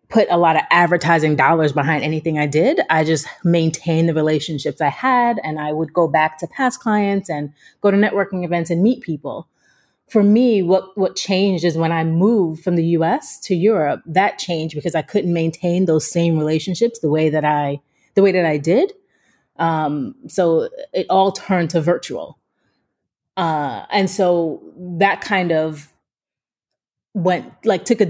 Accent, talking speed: American, 175 wpm